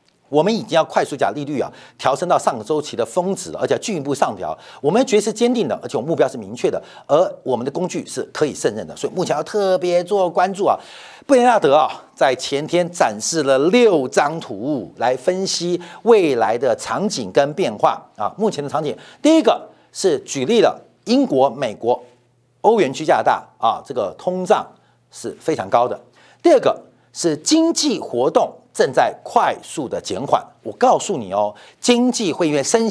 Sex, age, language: male, 50-69, Chinese